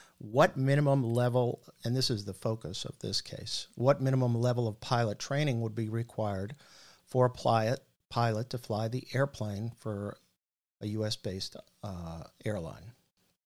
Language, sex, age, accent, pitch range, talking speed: English, male, 50-69, American, 110-130 Hz, 140 wpm